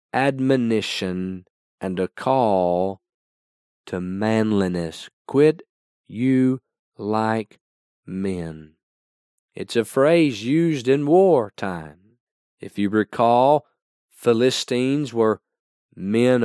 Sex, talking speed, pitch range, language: male, 85 wpm, 95-120 Hz, English